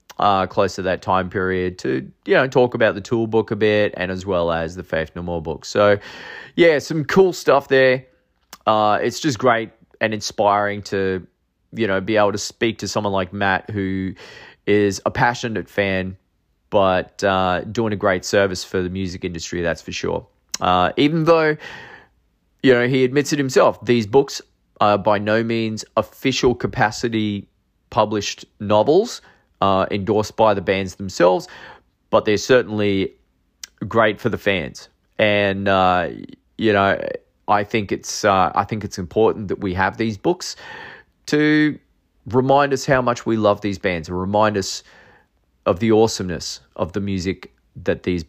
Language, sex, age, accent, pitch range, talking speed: English, male, 20-39, Australian, 95-120 Hz, 170 wpm